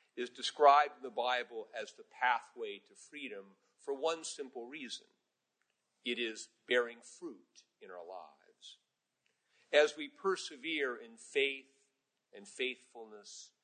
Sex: male